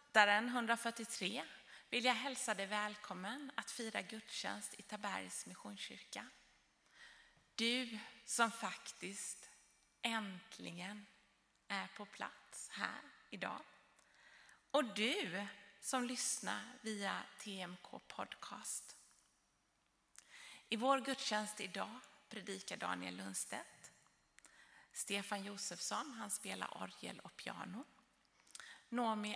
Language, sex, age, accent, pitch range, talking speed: Swedish, female, 30-49, native, 200-260 Hz, 90 wpm